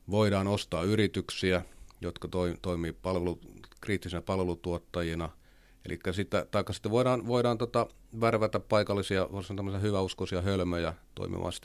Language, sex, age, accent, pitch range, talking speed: Finnish, male, 40-59, native, 90-105 Hz, 105 wpm